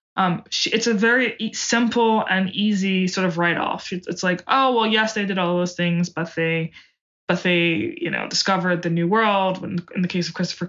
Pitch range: 175-205 Hz